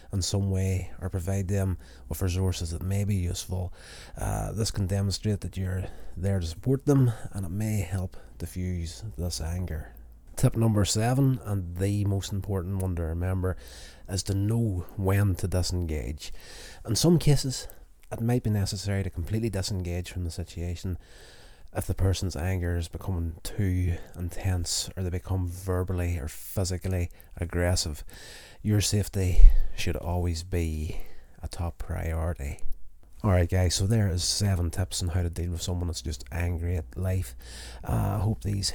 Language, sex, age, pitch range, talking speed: English, male, 30-49, 85-100 Hz, 155 wpm